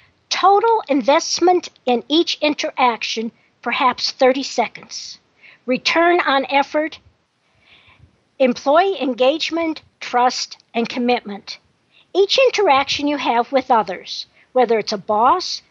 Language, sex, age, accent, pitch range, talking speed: English, female, 50-69, American, 245-330 Hz, 100 wpm